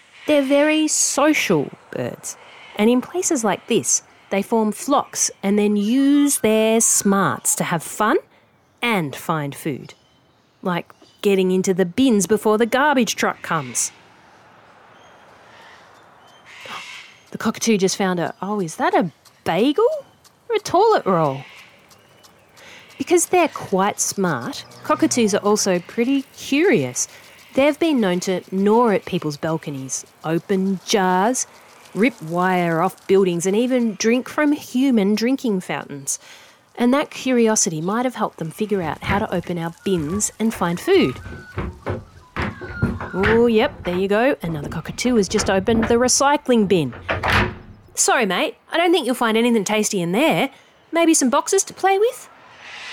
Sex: female